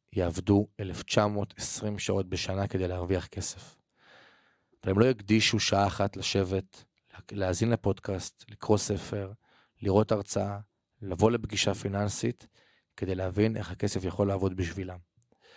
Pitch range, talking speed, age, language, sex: 95-110 Hz, 110 wpm, 30-49, Hebrew, male